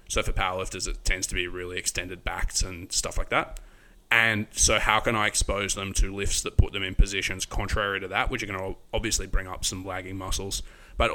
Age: 20-39